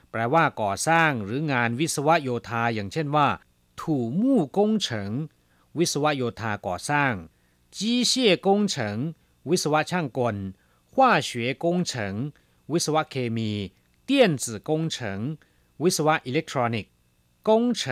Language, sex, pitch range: Chinese, male, 100-170 Hz